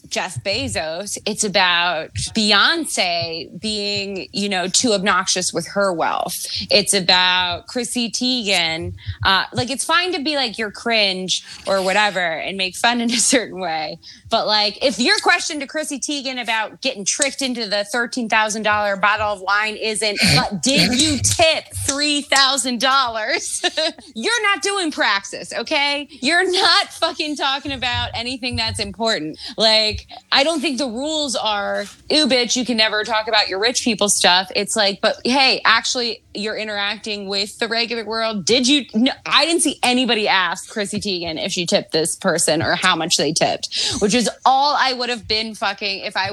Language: English